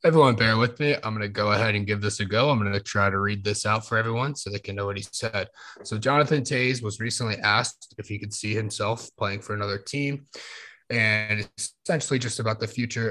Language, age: English, 30-49